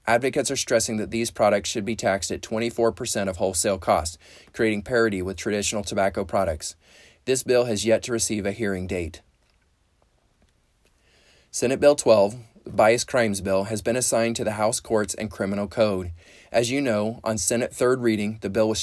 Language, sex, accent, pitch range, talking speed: English, male, American, 100-115 Hz, 175 wpm